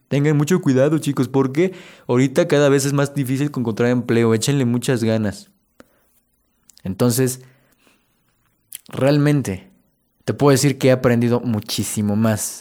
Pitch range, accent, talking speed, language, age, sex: 110-140 Hz, Mexican, 125 wpm, Spanish, 20-39, male